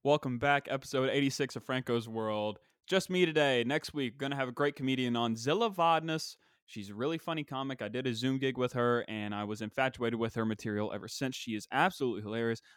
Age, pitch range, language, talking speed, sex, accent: 20-39, 115-145 Hz, English, 215 wpm, male, American